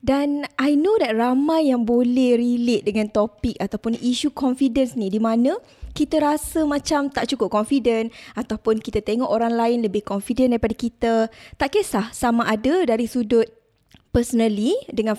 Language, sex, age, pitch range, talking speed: Malay, female, 20-39, 230-290 Hz, 155 wpm